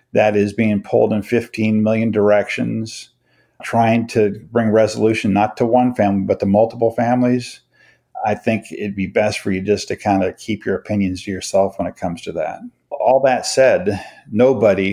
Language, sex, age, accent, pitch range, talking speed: English, male, 50-69, American, 100-115 Hz, 180 wpm